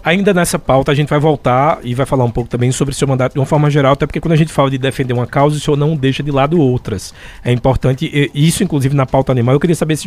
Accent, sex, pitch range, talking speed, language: Brazilian, male, 135-180 Hz, 300 wpm, Portuguese